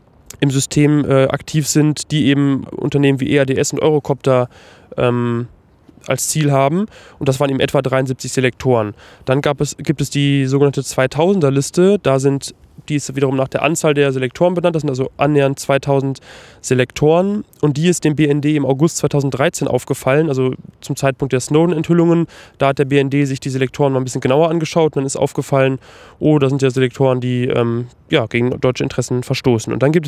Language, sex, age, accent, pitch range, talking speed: German, male, 20-39, German, 130-150 Hz, 180 wpm